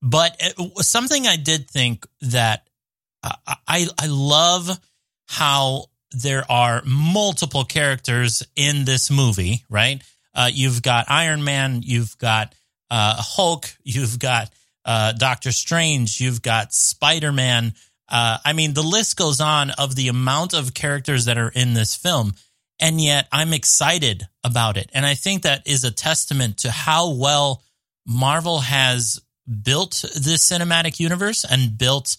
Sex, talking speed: male, 145 wpm